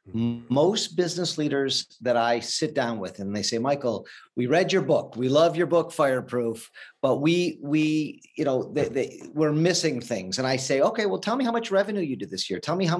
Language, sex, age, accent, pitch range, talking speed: English, male, 50-69, American, 120-165 Hz, 210 wpm